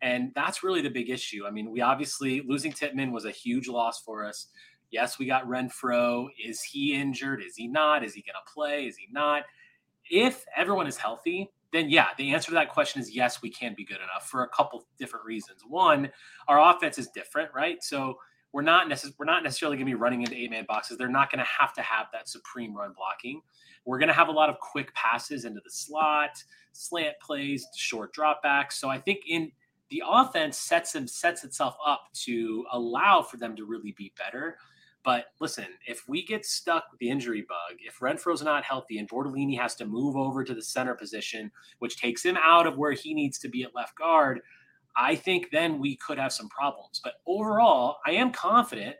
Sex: male